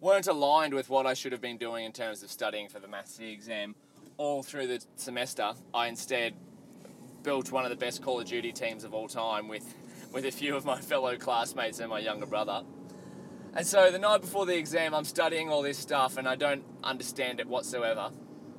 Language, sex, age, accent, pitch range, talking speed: English, male, 20-39, Australian, 120-145 Hz, 215 wpm